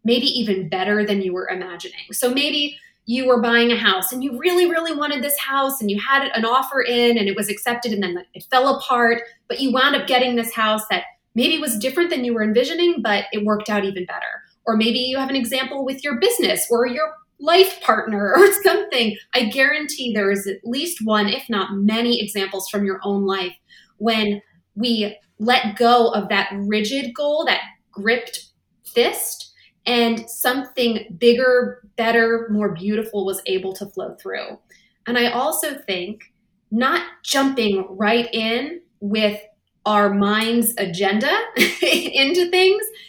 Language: English